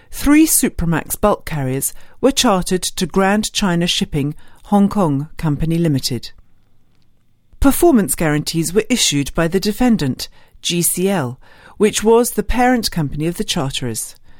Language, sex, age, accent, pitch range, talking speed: English, female, 50-69, British, 145-205 Hz, 125 wpm